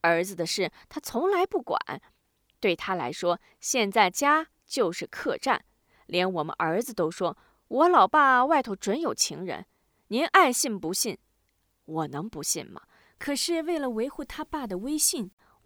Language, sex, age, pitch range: Chinese, female, 20-39, 185-305 Hz